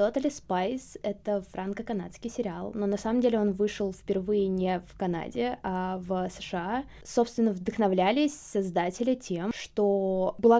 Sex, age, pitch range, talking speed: female, 20-39, 195-235 Hz, 140 wpm